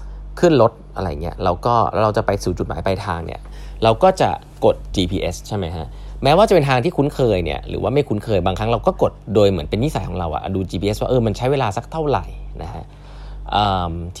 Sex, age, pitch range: male, 20-39, 95-145 Hz